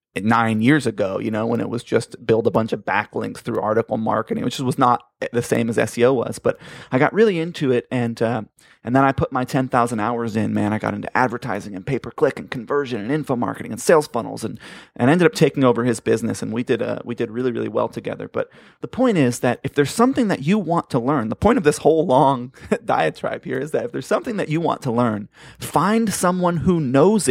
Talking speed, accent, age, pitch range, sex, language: 240 wpm, American, 30-49, 120-145 Hz, male, English